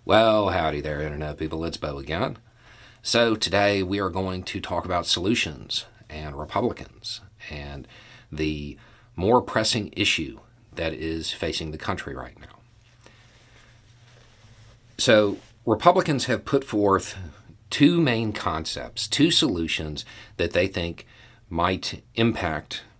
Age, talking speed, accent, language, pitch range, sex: 50-69, 120 wpm, American, English, 90-115 Hz, male